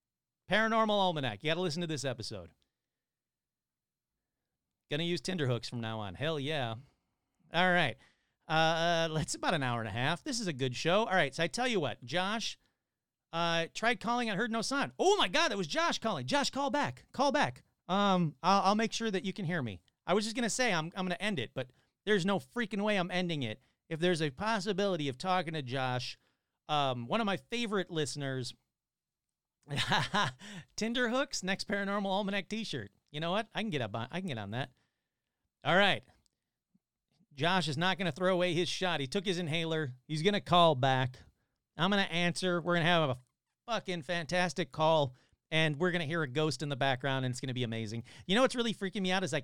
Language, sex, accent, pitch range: English, male, American, 135-195 Hz